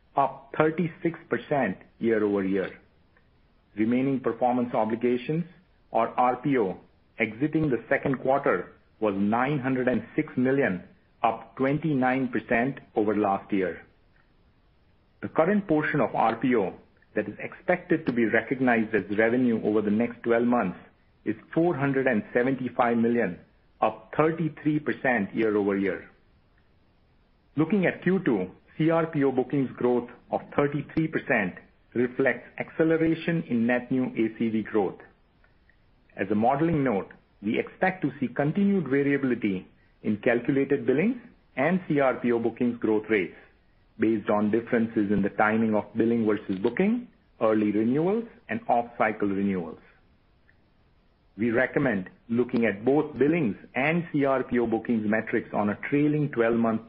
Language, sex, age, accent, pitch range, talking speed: English, male, 50-69, Indian, 110-150 Hz, 115 wpm